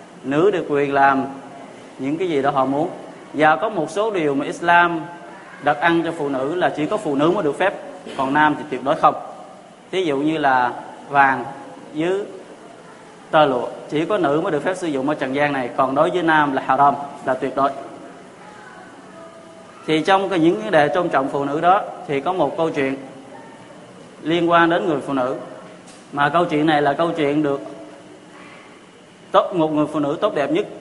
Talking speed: 205 wpm